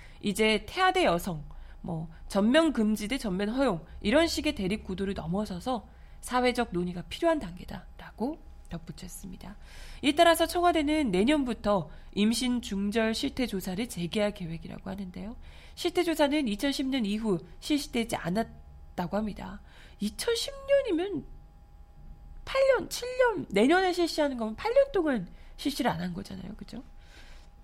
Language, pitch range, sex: Korean, 190-280 Hz, female